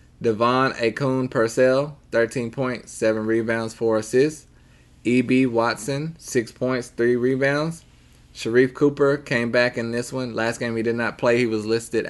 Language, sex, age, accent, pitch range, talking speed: English, male, 20-39, American, 105-125 Hz, 155 wpm